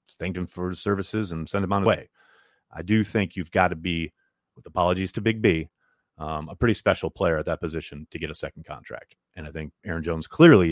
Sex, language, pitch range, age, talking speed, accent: male, English, 90-135 Hz, 30-49, 235 wpm, American